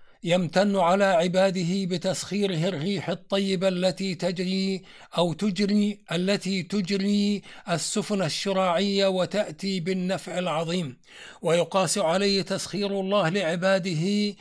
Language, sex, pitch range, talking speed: Arabic, male, 180-200 Hz, 90 wpm